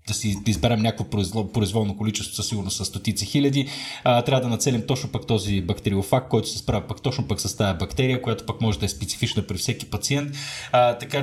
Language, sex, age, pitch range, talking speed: Bulgarian, male, 30-49, 100-120 Hz, 205 wpm